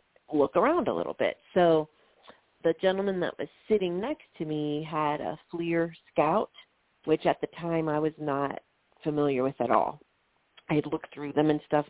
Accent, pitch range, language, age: American, 155-210 Hz, English, 40-59